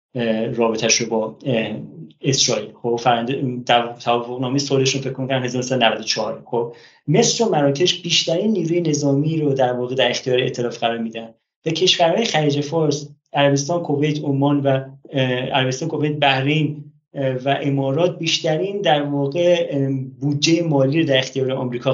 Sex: male